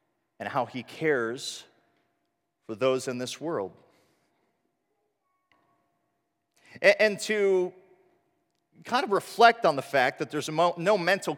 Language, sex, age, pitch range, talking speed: English, male, 40-59, 140-205 Hz, 110 wpm